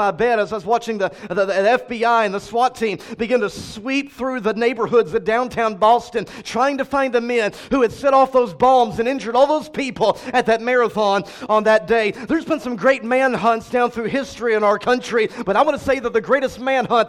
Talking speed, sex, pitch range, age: 230 wpm, male, 215-260 Hz, 40-59